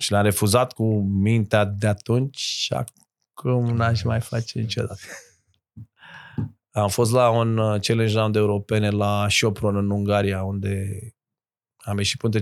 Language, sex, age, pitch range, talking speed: Romanian, male, 20-39, 105-125 Hz, 140 wpm